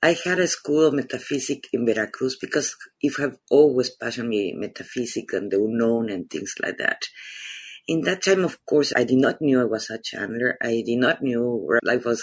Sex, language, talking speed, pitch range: female, English, 200 wpm, 120-145 Hz